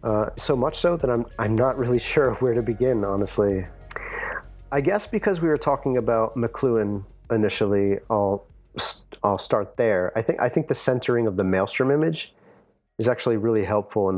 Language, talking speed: English, 180 wpm